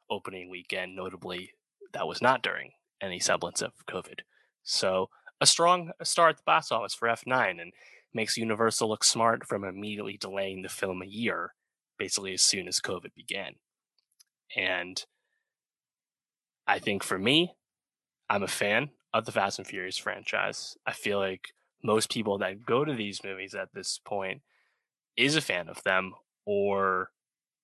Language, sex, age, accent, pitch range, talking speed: English, male, 20-39, American, 95-125 Hz, 155 wpm